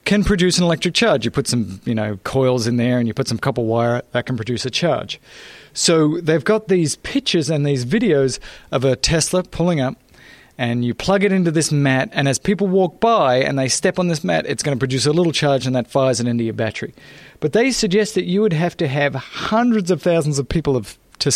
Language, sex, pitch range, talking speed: English, male, 130-180 Hz, 235 wpm